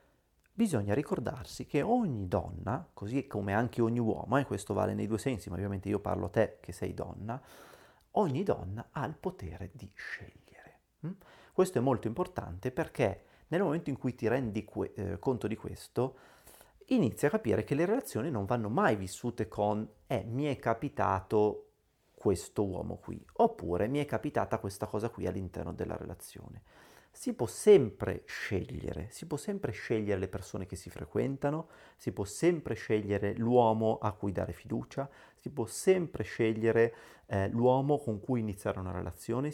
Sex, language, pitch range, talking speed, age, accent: male, Italian, 100-130 Hz, 165 wpm, 30-49, native